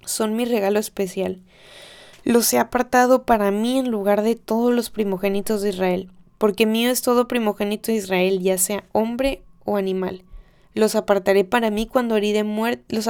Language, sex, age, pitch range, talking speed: Spanish, female, 20-39, 195-225 Hz, 175 wpm